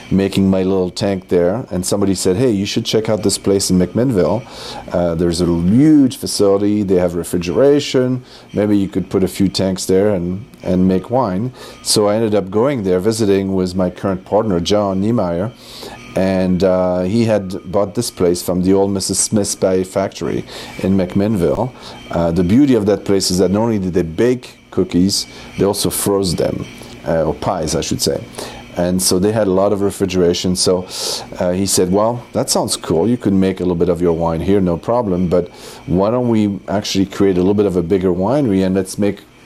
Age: 40-59